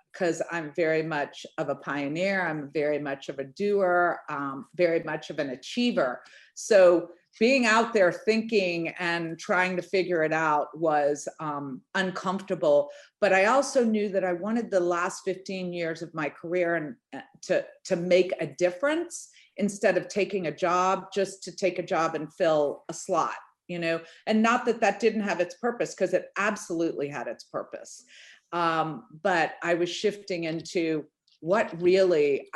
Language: English